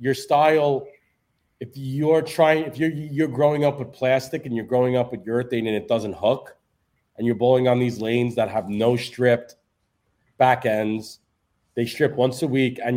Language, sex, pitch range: English, male, 115-145 Hz